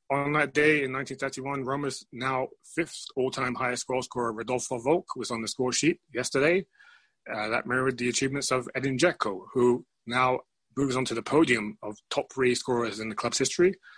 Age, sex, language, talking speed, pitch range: 30-49, male, English, 185 wpm, 120-140 Hz